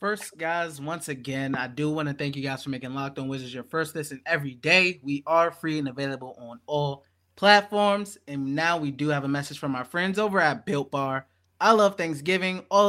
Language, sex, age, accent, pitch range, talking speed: English, male, 20-39, American, 135-175 Hz, 220 wpm